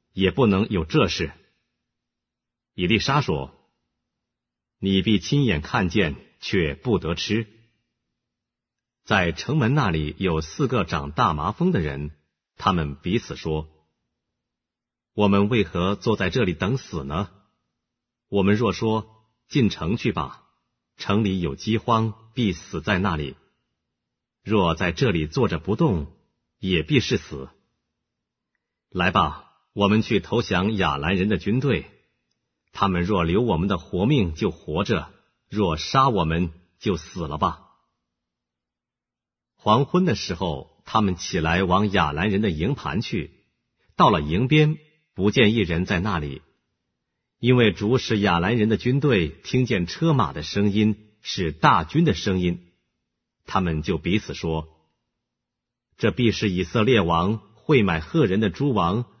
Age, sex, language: 50-69, male, English